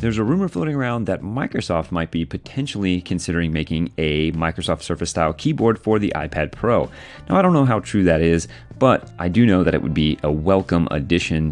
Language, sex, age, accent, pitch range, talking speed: English, male, 30-49, American, 80-105 Hz, 205 wpm